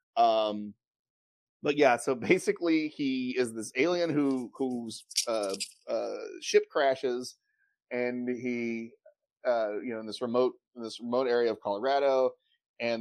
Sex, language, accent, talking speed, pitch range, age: male, English, American, 140 wpm, 115-155 Hz, 30-49